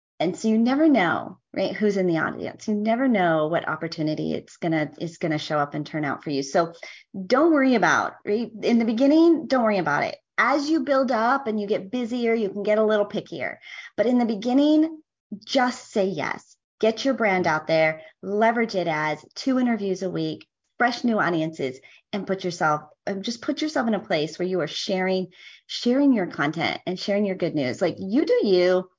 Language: English